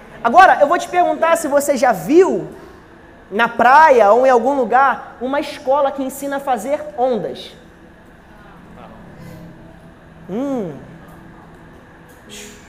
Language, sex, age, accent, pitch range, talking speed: Portuguese, male, 20-39, Brazilian, 255-325 Hz, 110 wpm